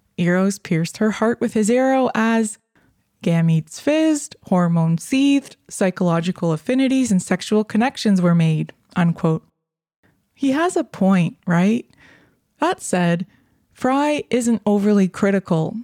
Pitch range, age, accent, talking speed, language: 175-225 Hz, 20-39, American, 115 wpm, English